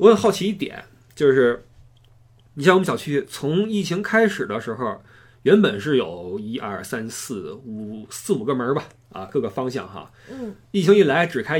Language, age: Chinese, 20-39